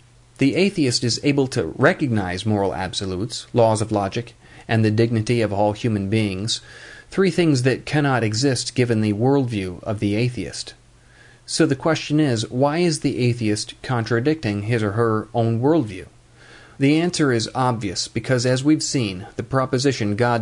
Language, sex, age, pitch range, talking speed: English, male, 40-59, 110-135 Hz, 160 wpm